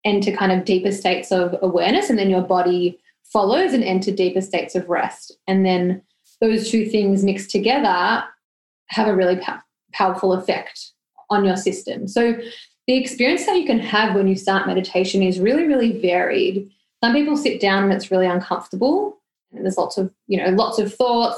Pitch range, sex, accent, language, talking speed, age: 185-230 Hz, female, Australian, English, 180 wpm, 20-39